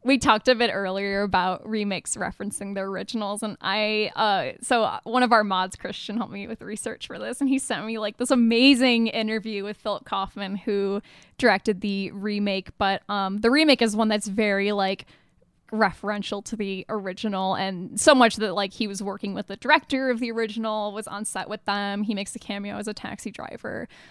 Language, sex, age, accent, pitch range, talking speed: English, female, 10-29, American, 200-230 Hz, 200 wpm